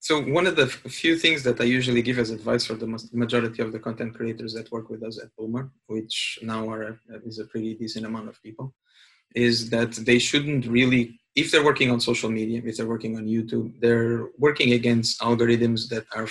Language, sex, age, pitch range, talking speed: English, male, 20-39, 115-120 Hz, 215 wpm